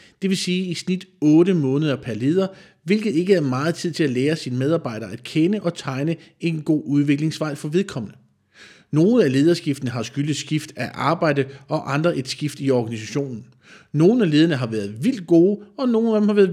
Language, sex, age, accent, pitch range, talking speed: Danish, male, 40-59, native, 140-190 Hz, 200 wpm